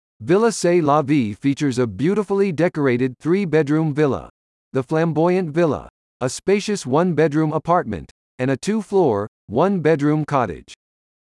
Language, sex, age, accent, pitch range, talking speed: English, male, 50-69, American, 125-180 Hz, 140 wpm